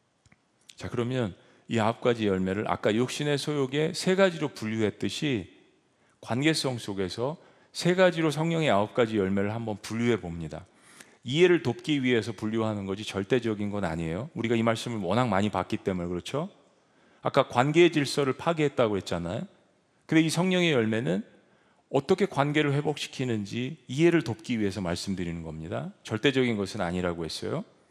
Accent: native